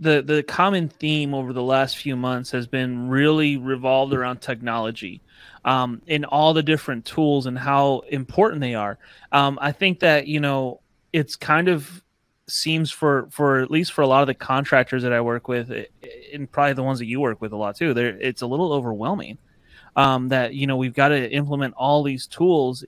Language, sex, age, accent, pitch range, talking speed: English, male, 30-49, American, 125-145 Hz, 205 wpm